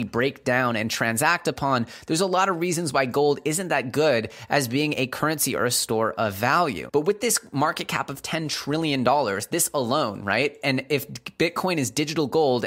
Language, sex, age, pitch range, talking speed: English, male, 20-39, 120-155 Hz, 195 wpm